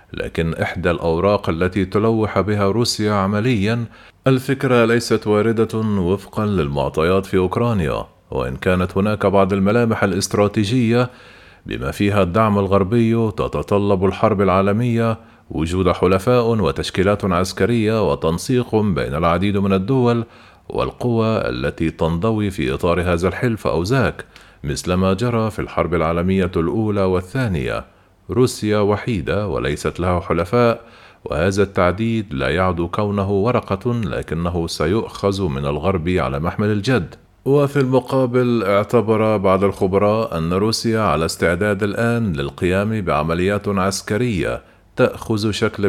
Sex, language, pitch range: male, Arabic, 90-115 Hz